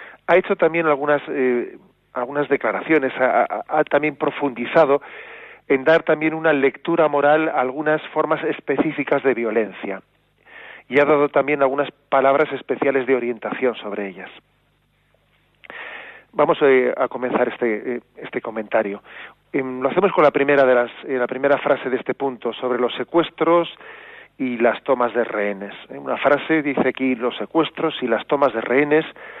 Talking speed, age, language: 160 wpm, 40-59, Spanish